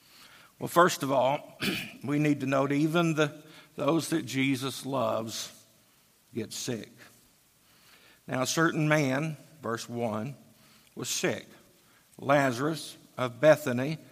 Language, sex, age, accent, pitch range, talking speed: English, male, 60-79, American, 140-175 Hz, 115 wpm